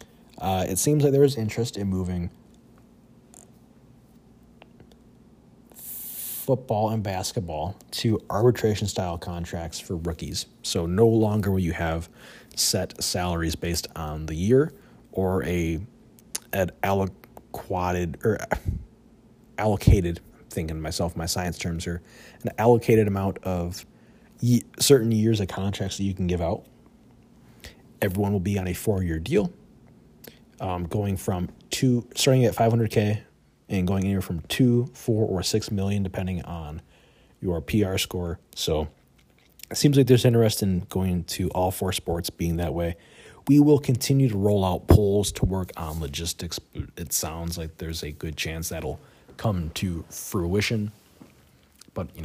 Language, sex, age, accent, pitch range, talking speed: English, male, 30-49, American, 85-110 Hz, 140 wpm